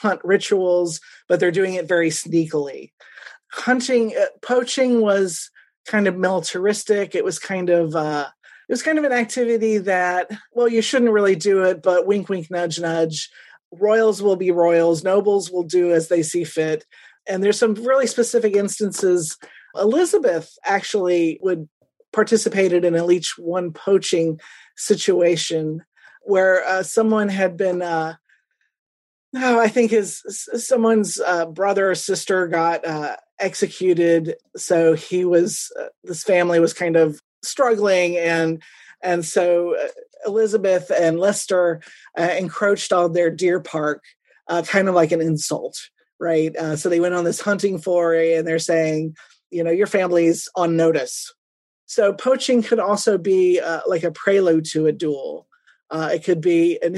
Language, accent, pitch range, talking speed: English, American, 170-210 Hz, 155 wpm